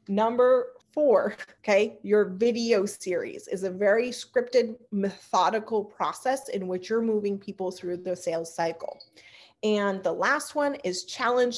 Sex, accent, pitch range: female, American, 190-235 Hz